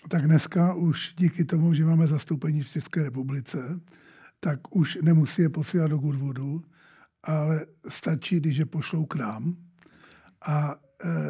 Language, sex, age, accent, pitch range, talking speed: Czech, male, 50-69, native, 150-170 Hz, 145 wpm